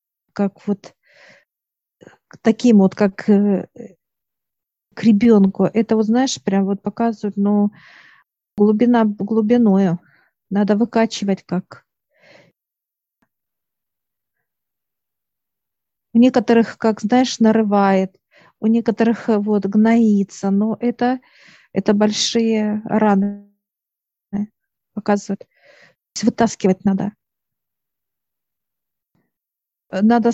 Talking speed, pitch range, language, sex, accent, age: 75 wpm, 195-230 Hz, Russian, female, native, 40-59